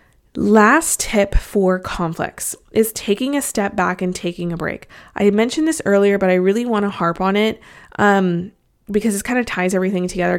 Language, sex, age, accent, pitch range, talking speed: English, female, 20-39, American, 185-230 Hz, 190 wpm